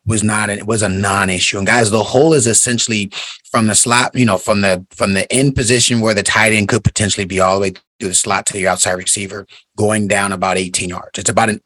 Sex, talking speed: male, 250 wpm